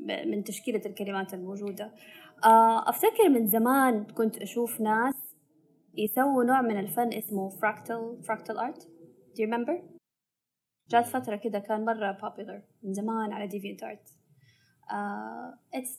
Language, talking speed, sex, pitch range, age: Arabic, 120 wpm, female, 185-235 Hz, 20-39